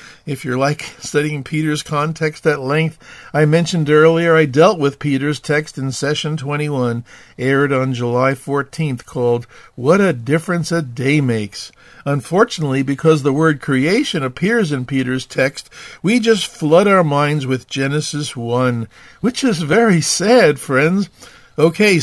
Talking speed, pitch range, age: 145 wpm, 140-185 Hz, 50-69